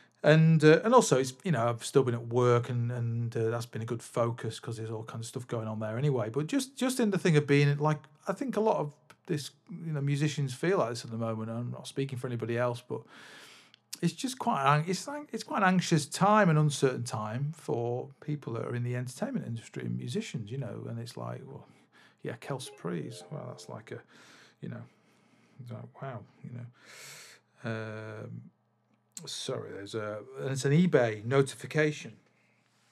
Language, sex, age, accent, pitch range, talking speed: English, male, 40-59, British, 115-150 Hz, 200 wpm